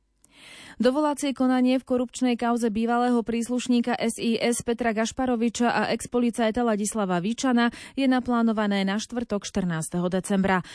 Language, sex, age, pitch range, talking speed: Slovak, female, 30-49, 195-235 Hz, 110 wpm